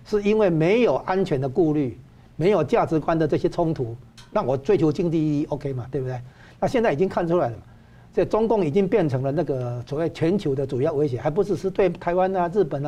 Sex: male